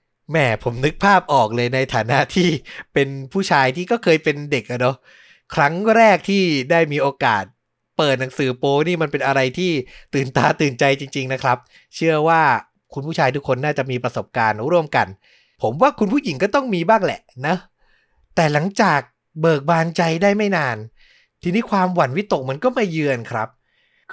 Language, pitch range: Thai, 140-195 Hz